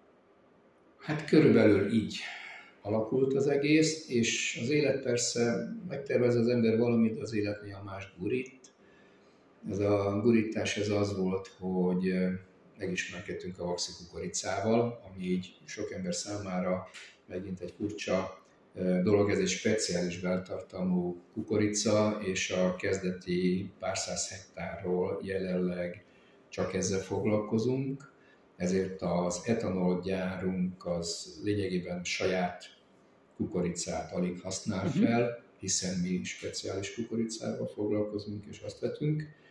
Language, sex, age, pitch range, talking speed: Hungarian, male, 50-69, 90-110 Hz, 110 wpm